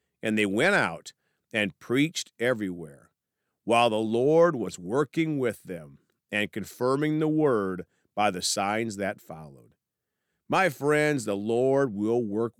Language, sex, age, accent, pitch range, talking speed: English, male, 50-69, American, 100-140 Hz, 140 wpm